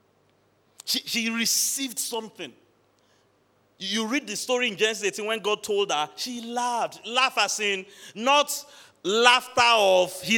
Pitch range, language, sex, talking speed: 145-215 Hz, English, male, 135 wpm